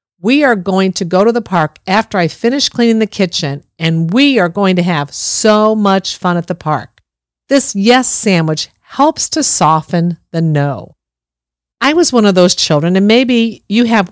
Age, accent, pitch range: 50-69, American, 165-230 Hz